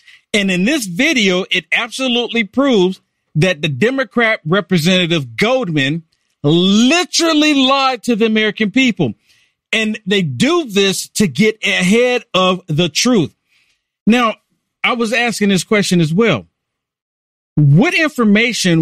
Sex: male